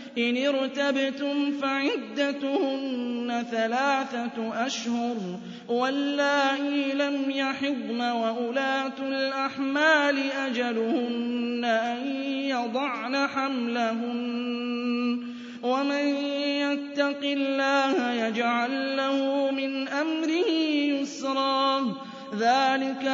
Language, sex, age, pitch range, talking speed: Arabic, male, 20-39, 240-285 Hz, 60 wpm